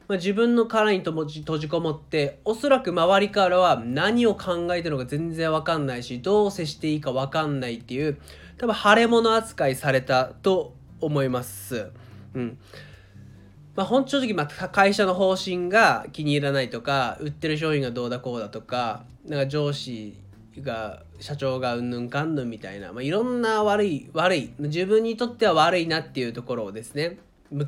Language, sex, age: Japanese, male, 20-39